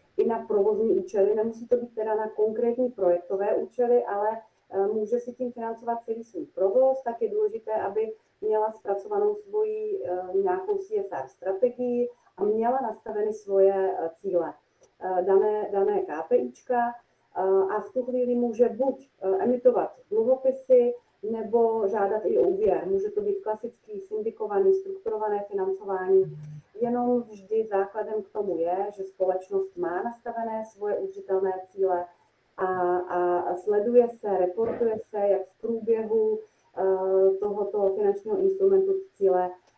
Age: 30-49